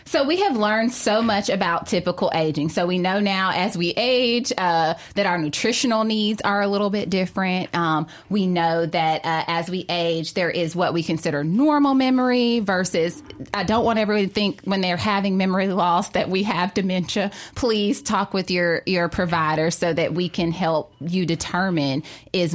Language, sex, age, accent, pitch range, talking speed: English, female, 20-39, American, 165-215 Hz, 190 wpm